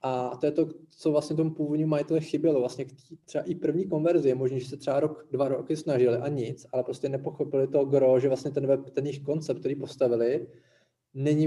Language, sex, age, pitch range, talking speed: Czech, male, 20-39, 130-155 Hz, 210 wpm